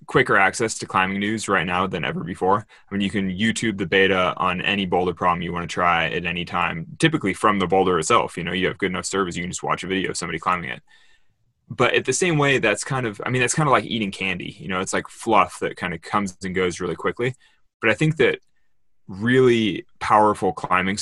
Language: English